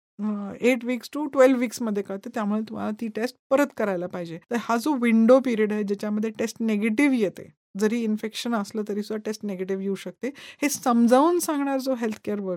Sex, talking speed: female, 145 wpm